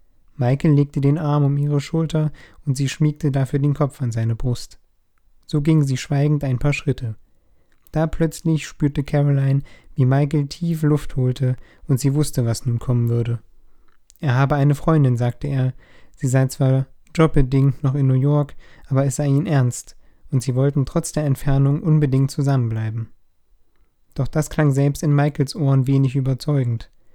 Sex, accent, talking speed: male, German, 165 wpm